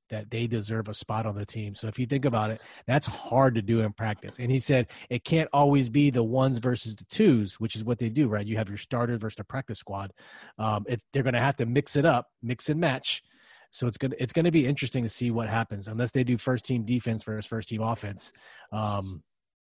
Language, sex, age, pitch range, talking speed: English, male, 30-49, 110-130 Hz, 245 wpm